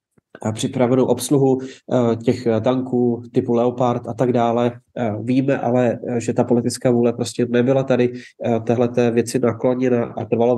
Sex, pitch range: male, 115-125 Hz